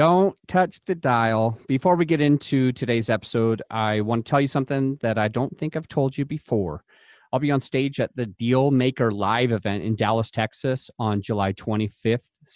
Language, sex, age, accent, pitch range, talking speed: English, male, 30-49, American, 115-160 Hz, 185 wpm